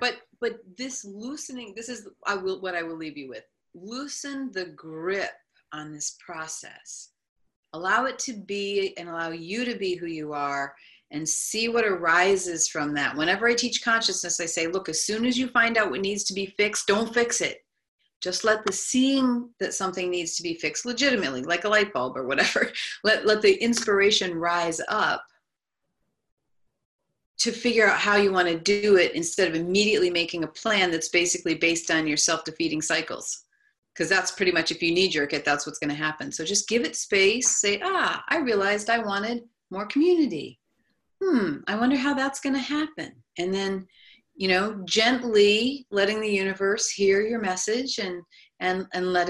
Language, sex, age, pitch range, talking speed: English, female, 40-59, 170-230 Hz, 185 wpm